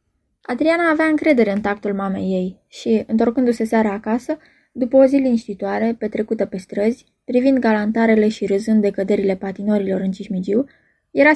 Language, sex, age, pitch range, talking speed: Romanian, female, 20-39, 200-250 Hz, 150 wpm